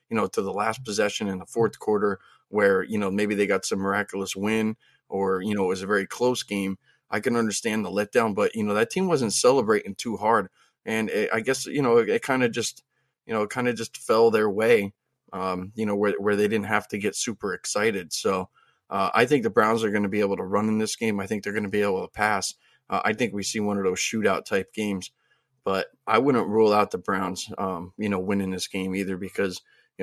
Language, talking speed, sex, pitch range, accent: English, 250 wpm, male, 95-110 Hz, American